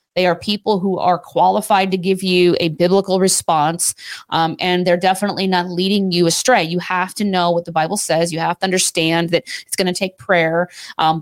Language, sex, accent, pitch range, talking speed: English, female, American, 175-210 Hz, 210 wpm